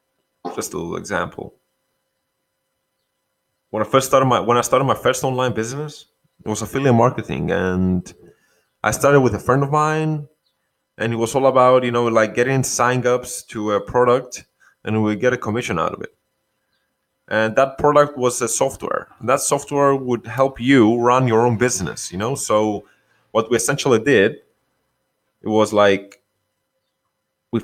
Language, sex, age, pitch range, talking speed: English, male, 20-39, 105-130 Hz, 165 wpm